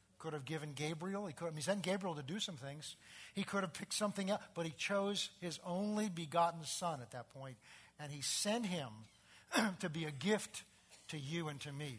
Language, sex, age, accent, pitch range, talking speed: English, male, 50-69, American, 135-180 Hz, 215 wpm